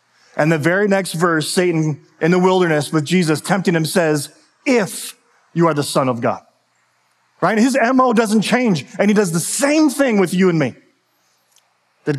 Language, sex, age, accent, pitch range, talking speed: English, male, 30-49, American, 160-225 Hz, 180 wpm